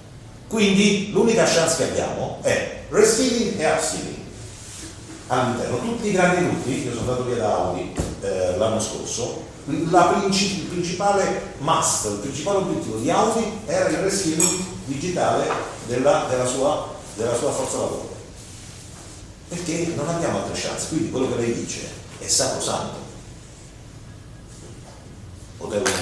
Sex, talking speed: male, 135 wpm